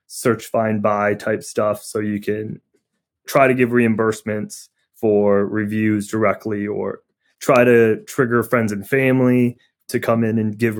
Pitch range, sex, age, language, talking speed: 110-130 Hz, male, 20-39, English, 150 wpm